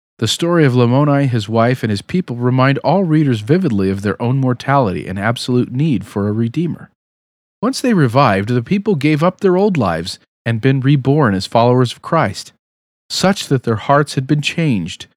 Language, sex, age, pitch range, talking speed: English, male, 40-59, 110-150 Hz, 185 wpm